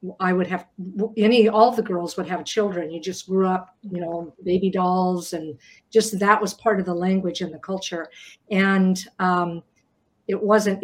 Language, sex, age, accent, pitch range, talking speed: English, female, 50-69, American, 180-215 Hz, 190 wpm